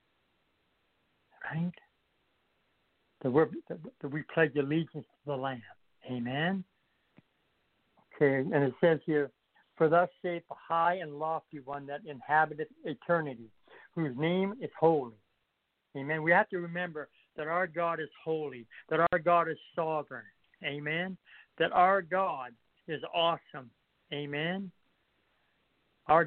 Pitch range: 145-175 Hz